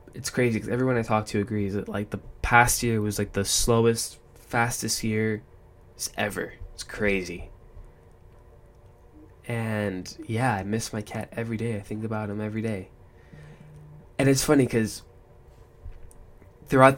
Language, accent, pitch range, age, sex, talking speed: English, American, 100-120 Hz, 10-29, male, 145 wpm